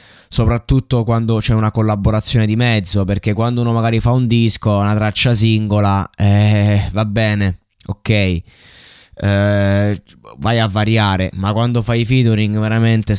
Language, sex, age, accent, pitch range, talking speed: Italian, male, 20-39, native, 100-120 Hz, 135 wpm